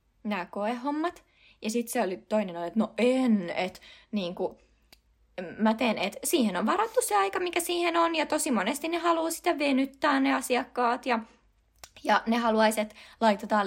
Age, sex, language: 20-39, female, Finnish